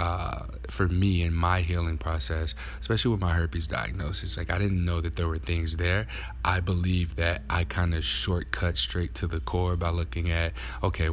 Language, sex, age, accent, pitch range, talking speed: English, male, 20-39, American, 80-90 Hz, 195 wpm